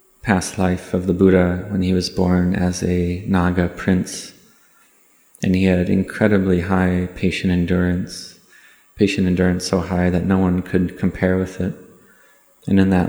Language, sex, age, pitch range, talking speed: English, male, 20-39, 90-95 Hz, 155 wpm